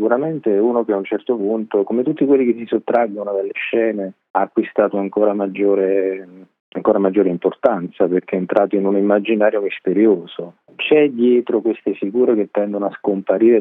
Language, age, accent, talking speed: Italian, 30-49, native, 160 wpm